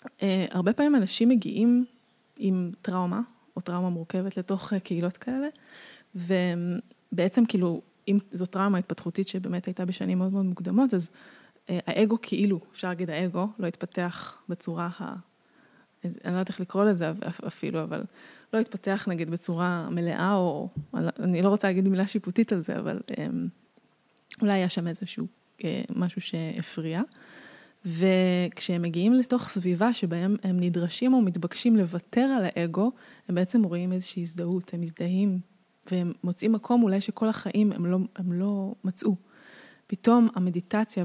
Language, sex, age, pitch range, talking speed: Hebrew, female, 20-39, 180-210 Hz, 145 wpm